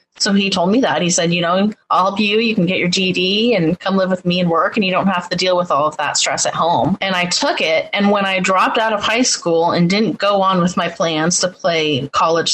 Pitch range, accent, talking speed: 170-200 Hz, American, 280 wpm